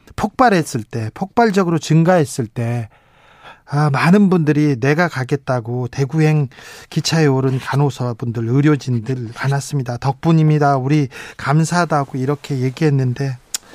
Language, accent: Korean, native